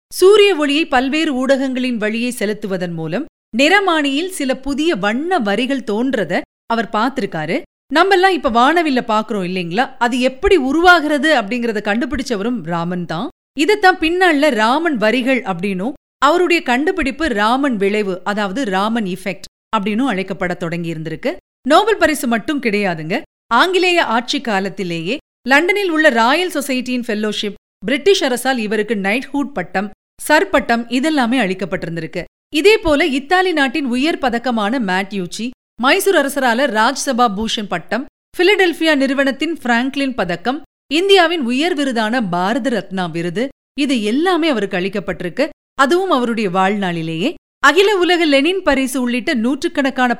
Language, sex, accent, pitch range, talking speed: Tamil, female, native, 205-305 Hz, 115 wpm